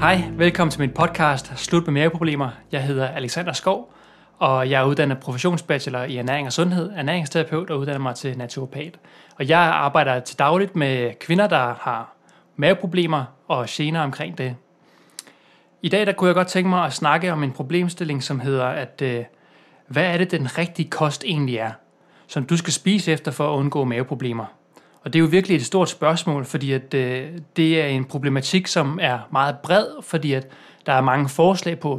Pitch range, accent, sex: 135-170 Hz, native, male